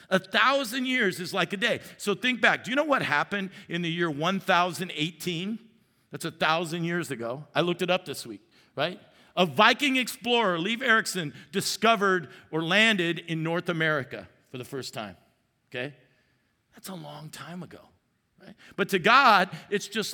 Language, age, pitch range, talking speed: English, 50-69, 155-200 Hz, 175 wpm